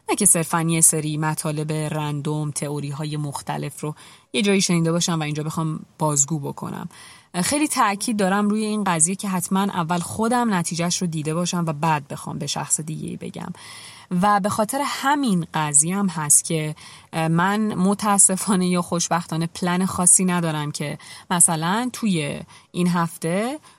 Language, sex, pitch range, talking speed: Persian, female, 155-205 Hz, 155 wpm